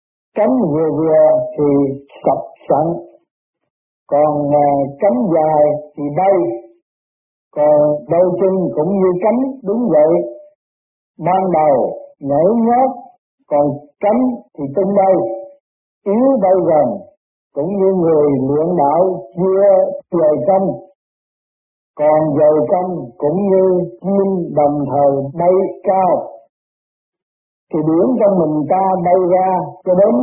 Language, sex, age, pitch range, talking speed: Vietnamese, male, 50-69, 150-205 Hz, 115 wpm